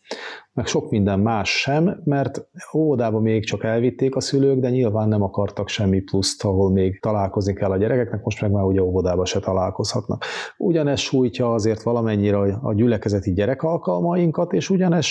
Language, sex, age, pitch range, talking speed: Hungarian, male, 40-59, 105-150 Hz, 165 wpm